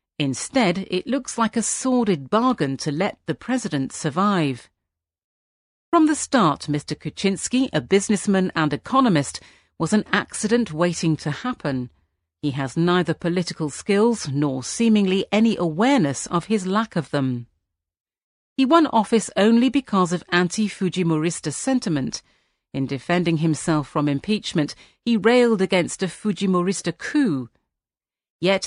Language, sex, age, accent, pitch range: Chinese, female, 40-59, British, 155-215 Hz